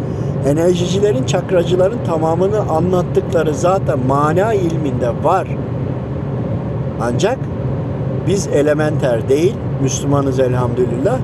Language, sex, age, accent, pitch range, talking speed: Turkish, male, 50-69, native, 135-155 Hz, 75 wpm